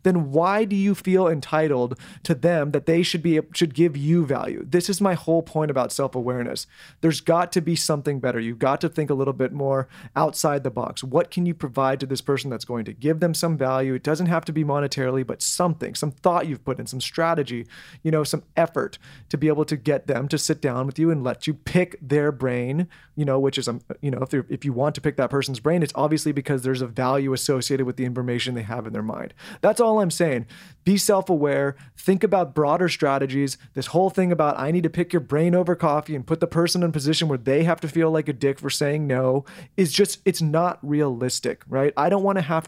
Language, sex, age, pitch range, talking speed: English, male, 30-49, 135-170 Hz, 240 wpm